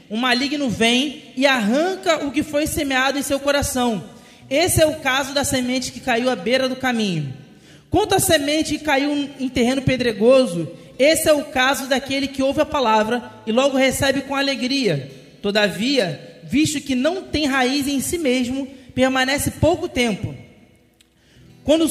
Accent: Brazilian